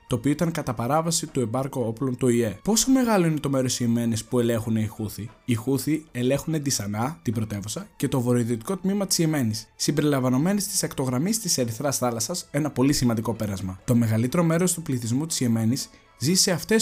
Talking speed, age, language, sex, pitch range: 190 wpm, 20-39, Greek, male, 115-155 Hz